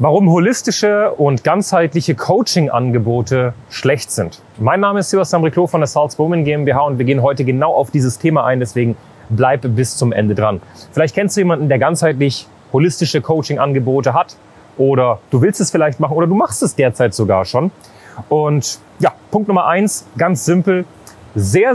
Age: 30-49